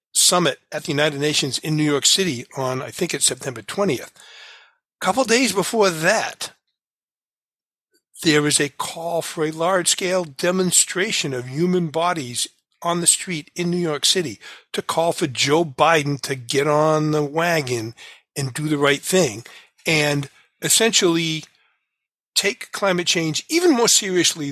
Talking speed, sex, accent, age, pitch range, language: 150 wpm, male, American, 50-69, 145-180 Hz, English